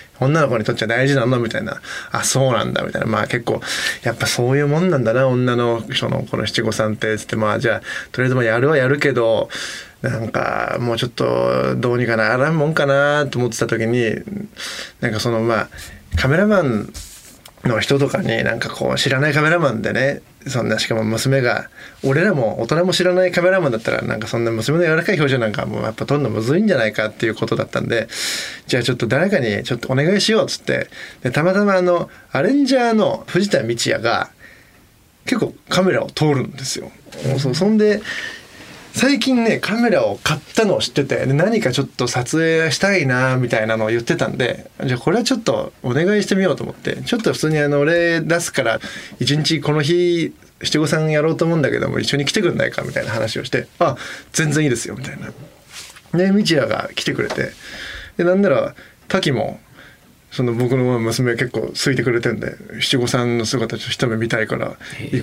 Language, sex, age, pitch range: Japanese, male, 20-39, 115-170 Hz